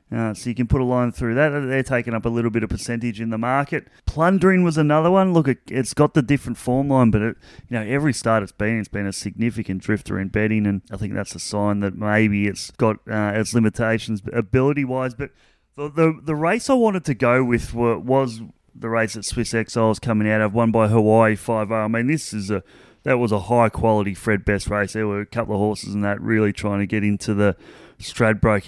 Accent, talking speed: Australian, 240 wpm